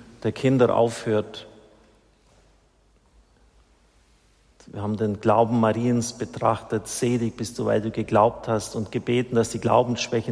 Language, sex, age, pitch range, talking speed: German, male, 50-69, 110-120 Hz, 120 wpm